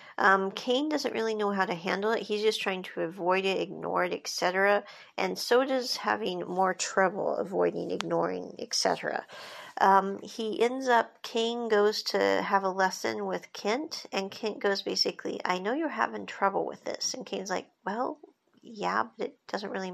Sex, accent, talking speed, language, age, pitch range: female, American, 180 wpm, English, 50-69, 190-245 Hz